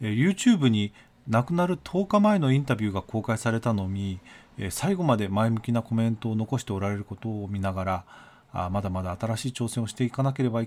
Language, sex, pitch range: Japanese, male, 110-155 Hz